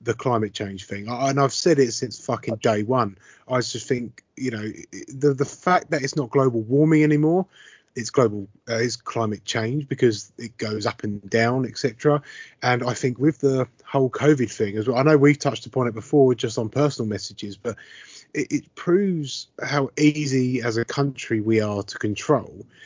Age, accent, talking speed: 30-49, British, 195 wpm